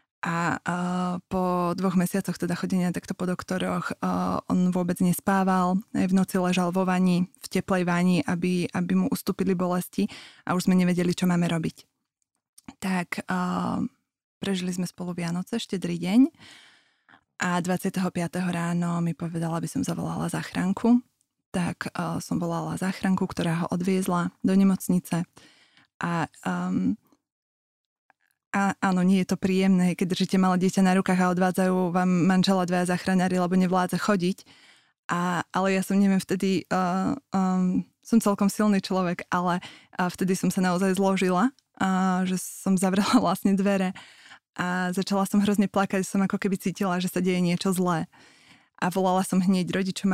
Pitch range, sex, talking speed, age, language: 180-195 Hz, female, 155 wpm, 20-39, Slovak